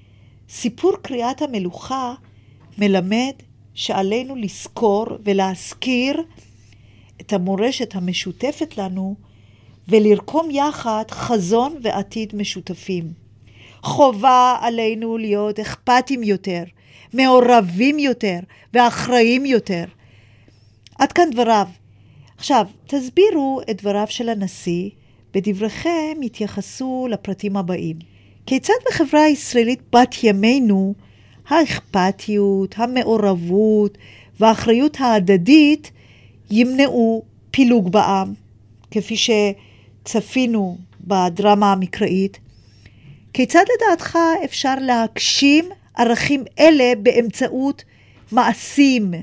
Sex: female